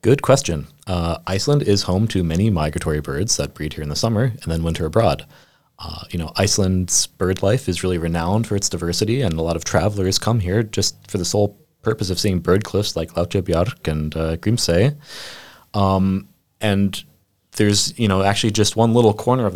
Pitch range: 85-110 Hz